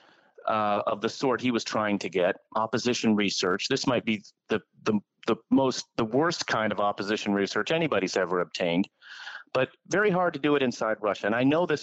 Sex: male